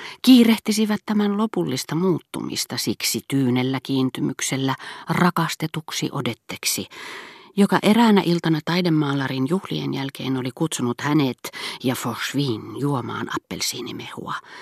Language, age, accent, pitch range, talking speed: Finnish, 40-59, native, 125-170 Hz, 90 wpm